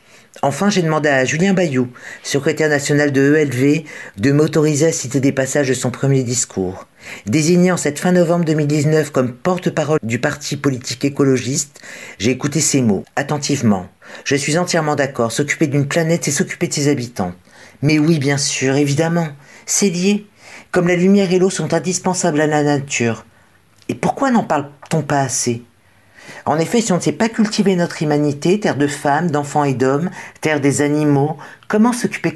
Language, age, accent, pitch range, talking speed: French, 50-69, French, 140-170 Hz, 170 wpm